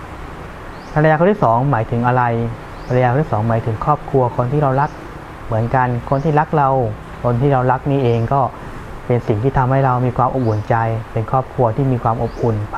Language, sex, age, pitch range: Thai, male, 20-39, 110-135 Hz